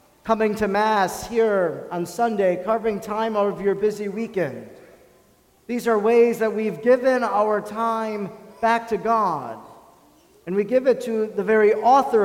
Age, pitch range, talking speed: 40-59, 190-230 Hz, 155 wpm